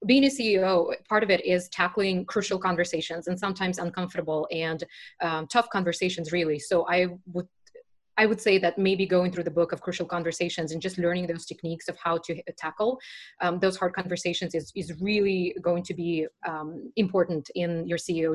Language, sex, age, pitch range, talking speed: English, female, 20-39, 170-200 Hz, 185 wpm